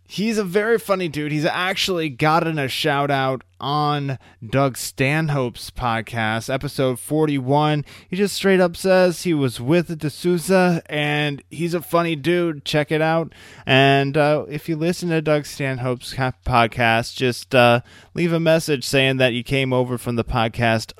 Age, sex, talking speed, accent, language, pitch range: 20-39, male, 155 wpm, American, English, 120-155 Hz